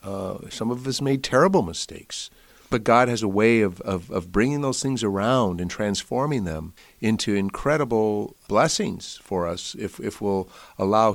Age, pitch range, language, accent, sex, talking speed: 50-69, 85-110 Hz, English, American, male, 165 wpm